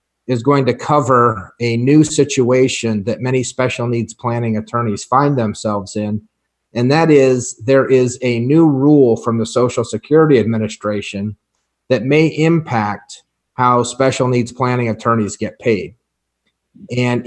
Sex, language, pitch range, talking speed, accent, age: male, English, 115-135 Hz, 140 wpm, American, 40-59